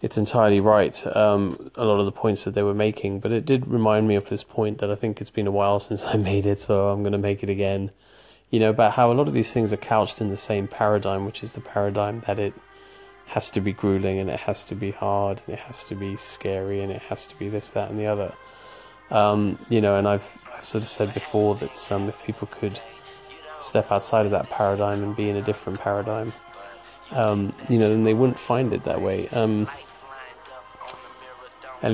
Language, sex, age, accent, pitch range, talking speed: English, male, 20-39, British, 100-110 Hz, 230 wpm